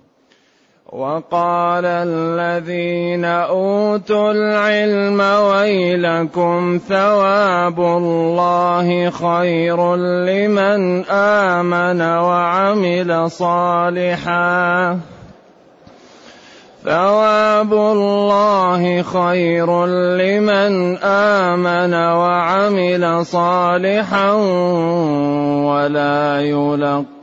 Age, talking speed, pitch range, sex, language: 30-49, 45 wpm, 170-185 Hz, male, Arabic